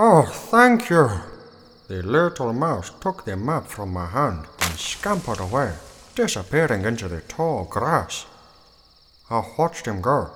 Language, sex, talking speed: English, male, 140 wpm